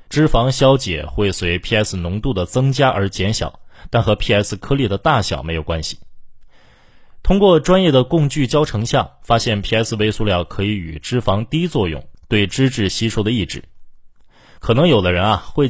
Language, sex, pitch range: Chinese, male, 95-125 Hz